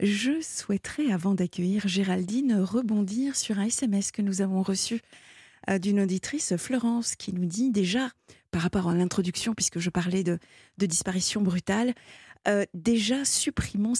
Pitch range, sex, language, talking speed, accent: 180-210 Hz, female, French, 150 wpm, French